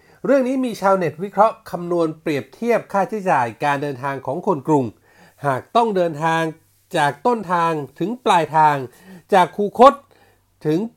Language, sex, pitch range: Thai, male, 150-205 Hz